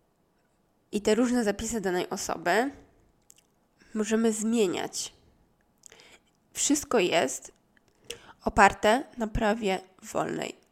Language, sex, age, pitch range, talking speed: Polish, female, 20-39, 185-220 Hz, 80 wpm